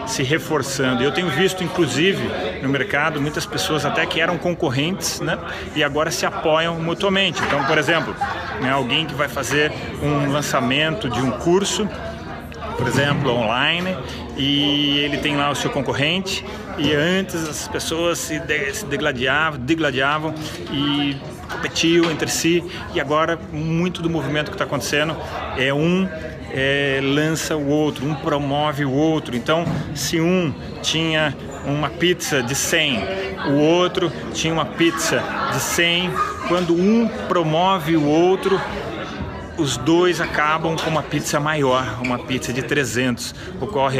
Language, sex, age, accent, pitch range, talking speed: Portuguese, male, 40-59, Brazilian, 140-165 Hz, 140 wpm